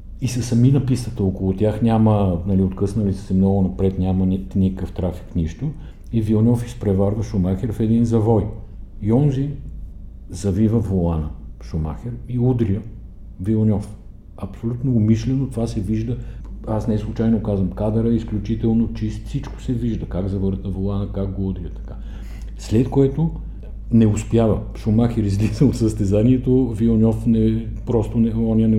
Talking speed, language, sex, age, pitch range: 140 wpm, Bulgarian, male, 50-69, 95-115 Hz